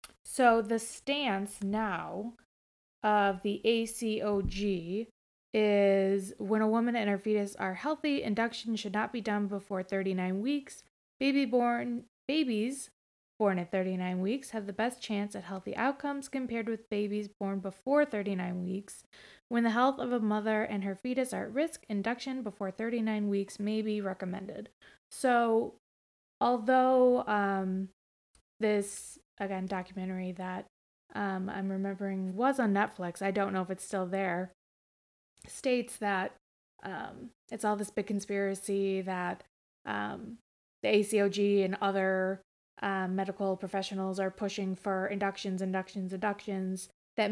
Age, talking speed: 20-39, 135 wpm